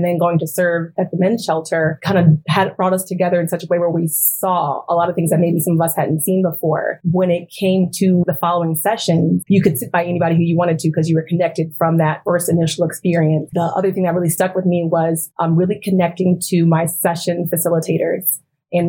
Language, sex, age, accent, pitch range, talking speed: English, female, 30-49, American, 165-185 Hz, 245 wpm